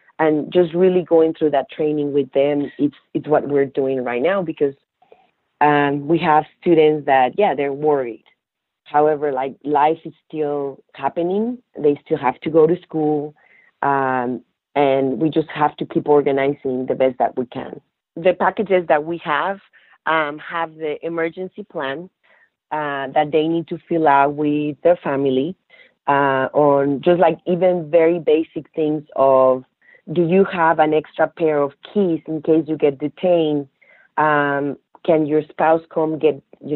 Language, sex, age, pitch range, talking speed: English, female, 30-49, 140-165 Hz, 165 wpm